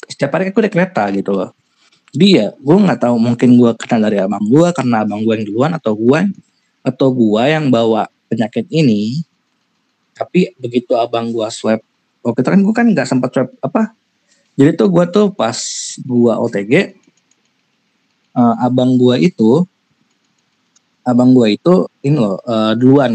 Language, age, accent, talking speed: Indonesian, 20-39, native, 160 wpm